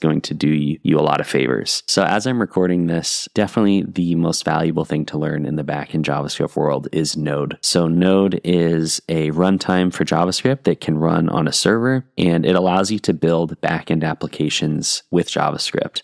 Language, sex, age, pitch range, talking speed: English, male, 20-39, 80-95 Hz, 185 wpm